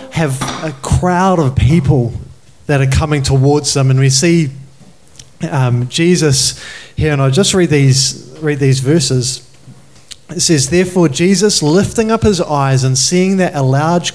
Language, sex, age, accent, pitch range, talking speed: English, male, 20-39, Australian, 130-165 Hz, 155 wpm